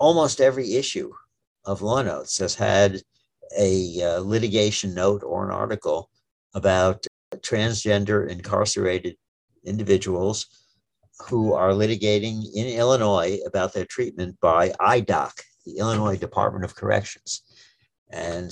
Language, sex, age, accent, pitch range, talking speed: English, male, 60-79, American, 95-115 Hz, 115 wpm